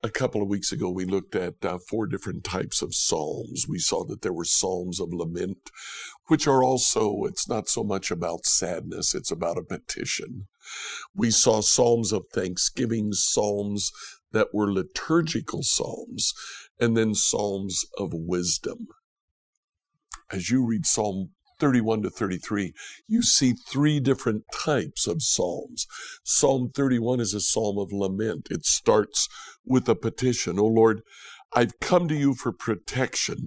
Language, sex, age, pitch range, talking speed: English, male, 60-79, 105-135 Hz, 150 wpm